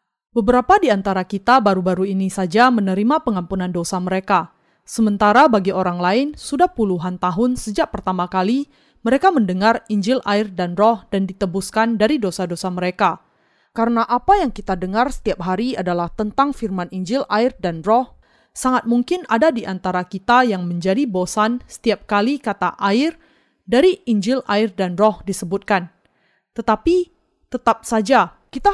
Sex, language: female, Indonesian